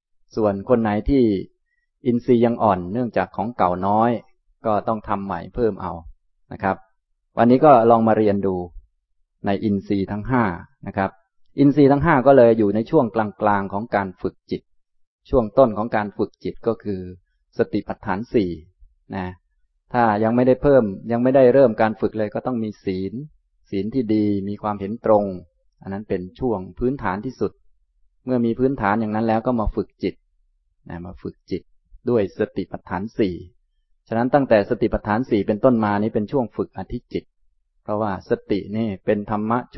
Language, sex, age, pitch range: Thai, male, 20-39, 95-115 Hz